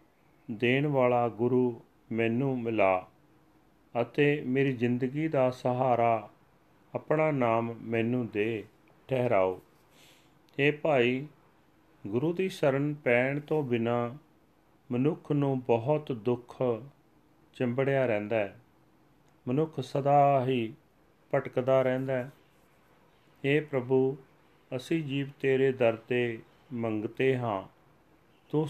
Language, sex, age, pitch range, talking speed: Punjabi, male, 40-59, 115-145 Hz, 90 wpm